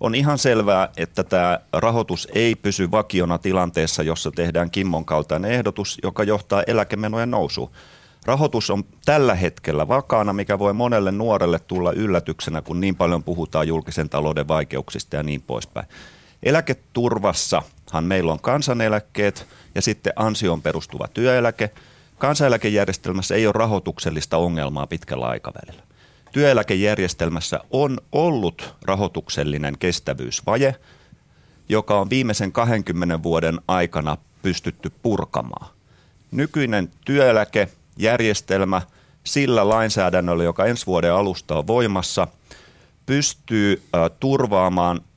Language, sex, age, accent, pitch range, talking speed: Finnish, male, 30-49, native, 85-115 Hz, 110 wpm